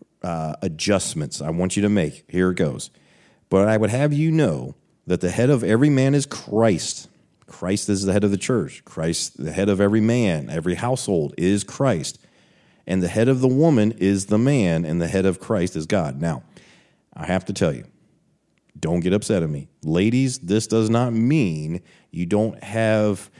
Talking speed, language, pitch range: 195 wpm, English, 85-110 Hz